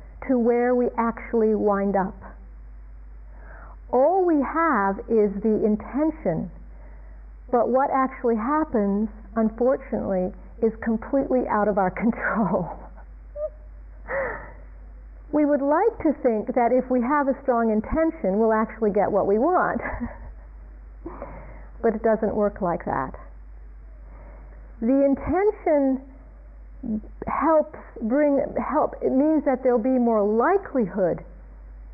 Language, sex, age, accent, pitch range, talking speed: English, female, 50-69, American, 175-255 Hz, 110 wpm